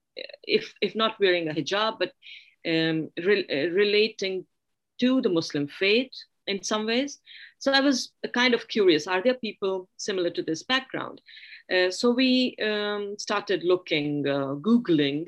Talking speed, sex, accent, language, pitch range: 150 wpm, female, Indian, English, 155-225 Hz